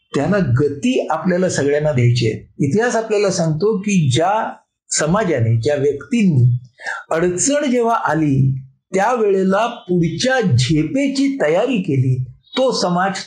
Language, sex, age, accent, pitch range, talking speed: Marathi, male, 60-79, native, 145-220 Hz, 60 wpm